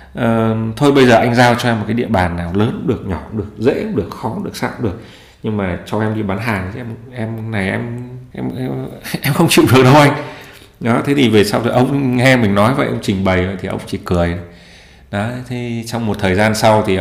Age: 20-39